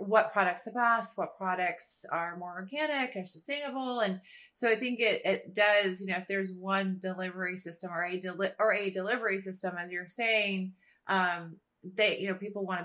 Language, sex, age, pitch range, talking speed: English, female, 30-49, 180-205 Hz, 195 wpm